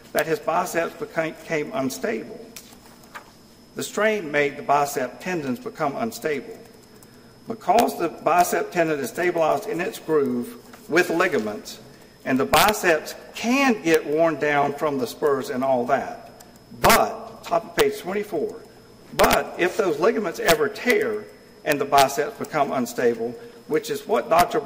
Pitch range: 150-225 Hz